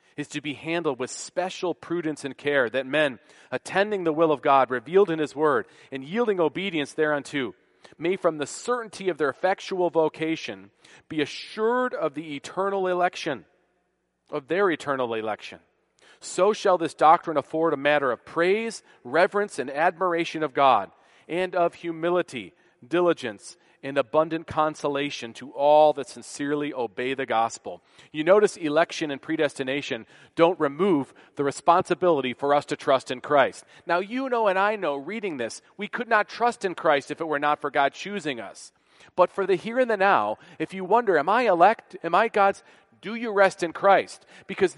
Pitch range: 140-185 Hz